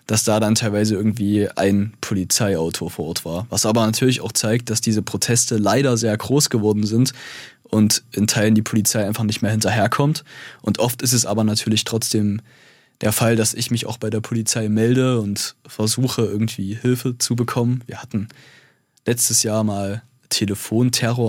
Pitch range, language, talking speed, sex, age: 105-115 Hz, German, 170 wpm, male, 20-39